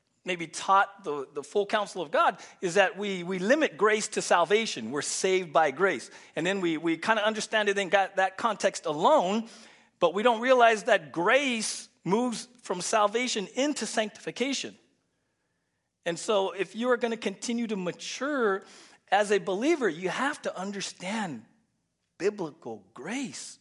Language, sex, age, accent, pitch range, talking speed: English, male, 40-59, American, 180-245 Hz, 160 wpm